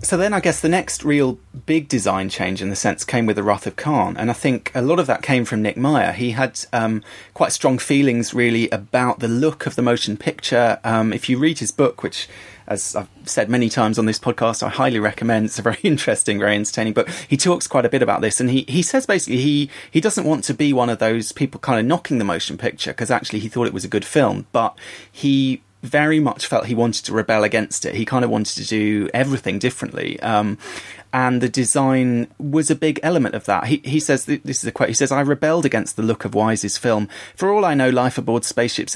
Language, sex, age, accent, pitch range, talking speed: English, male, 30-49, British, 115-140 Hz, 245 wpm